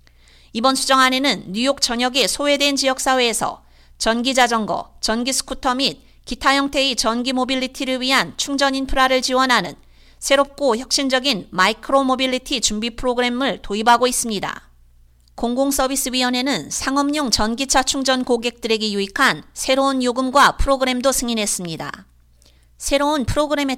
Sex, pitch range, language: female, 225-275 Hz, Korean